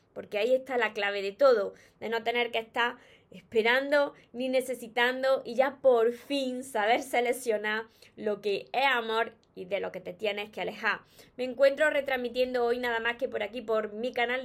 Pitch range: 220-260 Hz